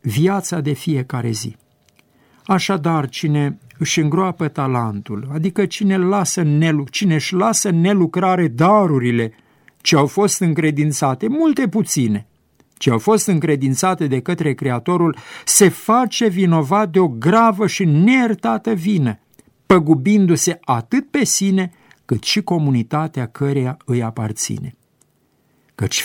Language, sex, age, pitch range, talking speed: Romanian, male, 50-69, 135-195 Hz, 110 wpm